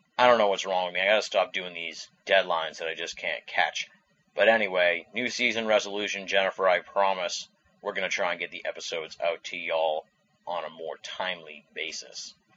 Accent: American